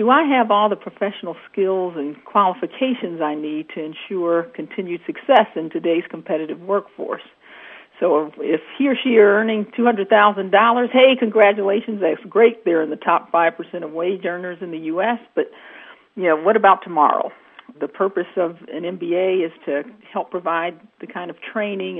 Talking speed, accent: 165 wpm, American